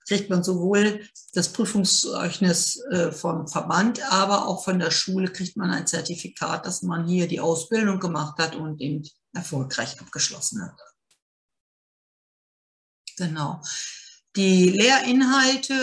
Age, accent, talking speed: 60-79, German, 120 wpm